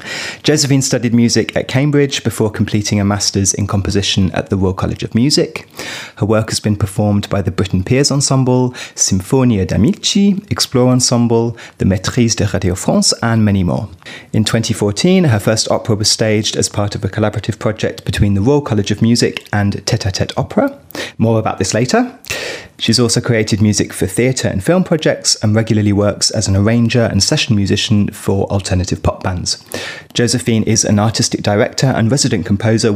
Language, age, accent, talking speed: English, 30-49, British, 175 wpm